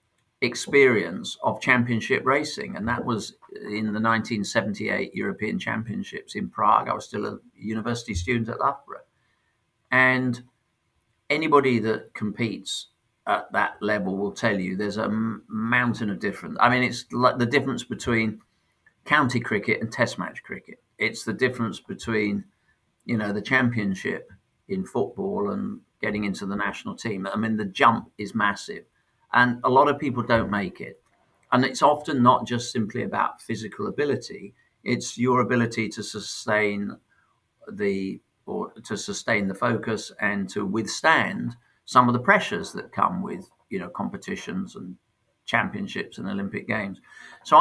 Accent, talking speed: British, 150 wpm